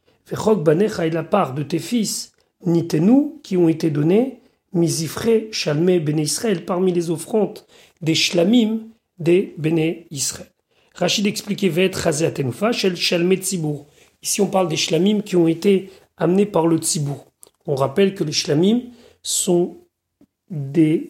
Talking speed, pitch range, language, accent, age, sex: 155 wpm, 160-205 Hz, French, French, 40-59, male